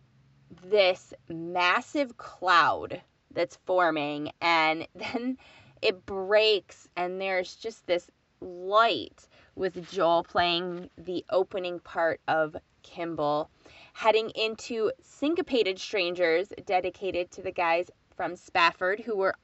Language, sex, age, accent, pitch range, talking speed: English, female, 20-39, American, 175-220 Hz, 105 wpm